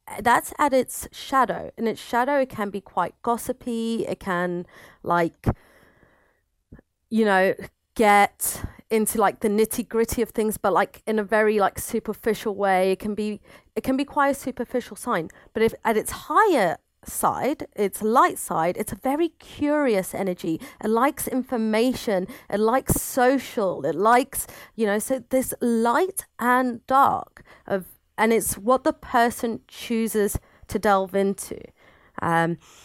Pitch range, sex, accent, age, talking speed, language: 195-250 Hz, female, British, 30-49, 145 wpm, English